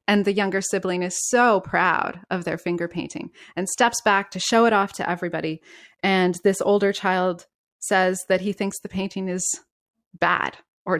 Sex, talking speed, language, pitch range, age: female, 180 wpm, English, 175-235 Hz, 20-39